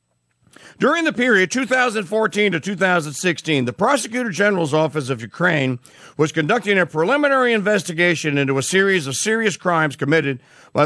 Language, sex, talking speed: English, male, 140 wpm